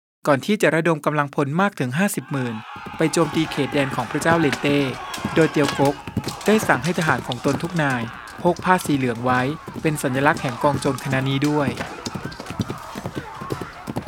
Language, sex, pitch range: Thai, male, 130-160 Hz